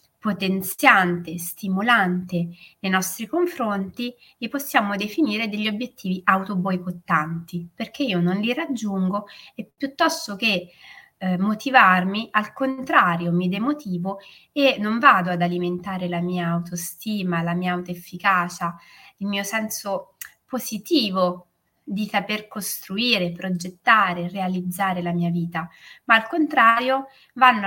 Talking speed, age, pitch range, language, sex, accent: 115 wpm, 20-39, 180-225 Hz, Italian, female, native